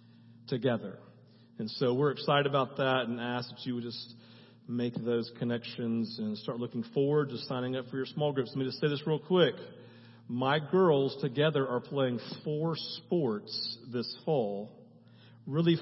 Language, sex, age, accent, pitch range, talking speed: English, male, 40-59, American, 120-175 Hz, 165 wpm